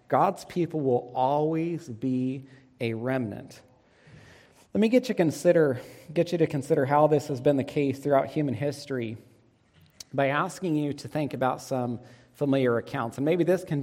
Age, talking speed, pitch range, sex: 40-59, 165 wpm, 125-145 Hz, male